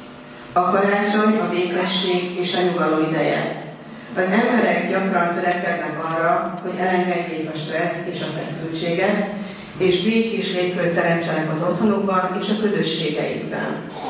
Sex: female